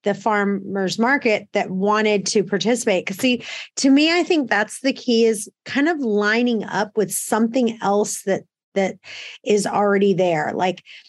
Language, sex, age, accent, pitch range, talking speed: English, female, 30-49, American, 195-235 Hz, 160 wpm